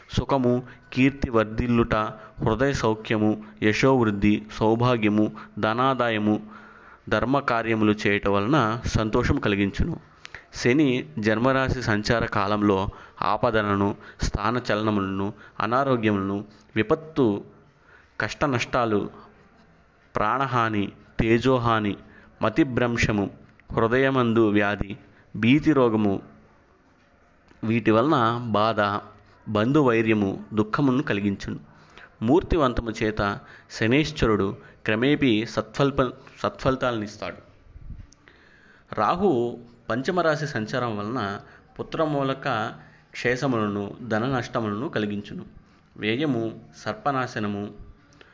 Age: 30-49